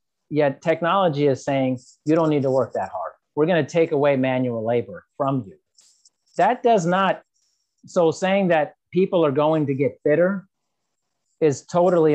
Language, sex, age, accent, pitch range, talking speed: English, male, 40-59, American, 140-175 Hz, 170 wpm